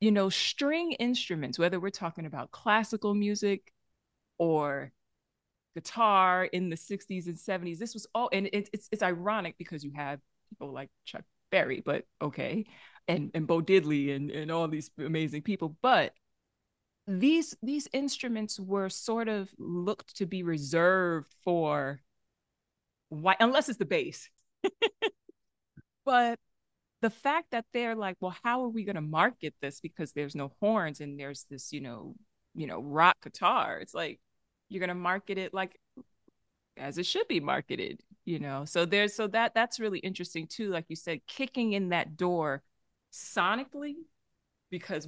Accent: American